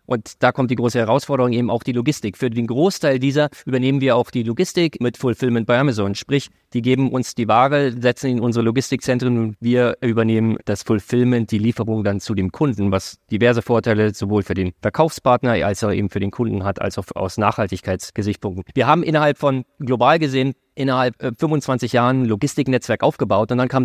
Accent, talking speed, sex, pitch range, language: German, 190 wpm, male, 115-135 Hz, German